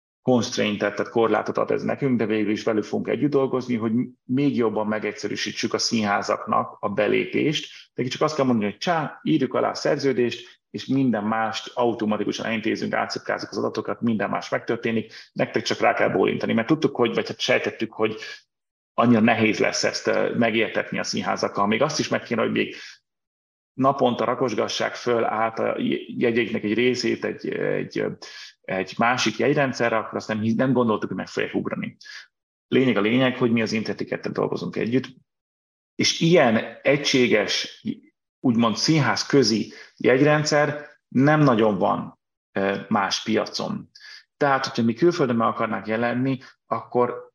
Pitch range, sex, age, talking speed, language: 110-135 Hz, male, 30-49, 150 wpm, Hungarian